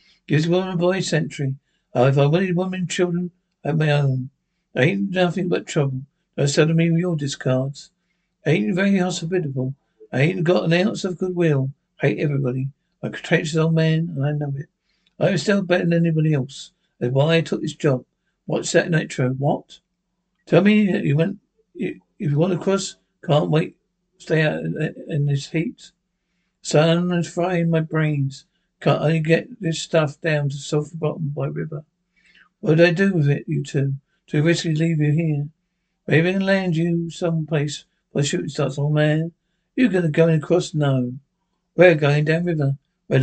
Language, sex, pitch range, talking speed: English, male, 150-180 Hz, 200 wpm